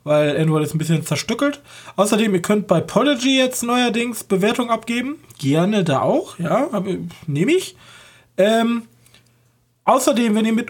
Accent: German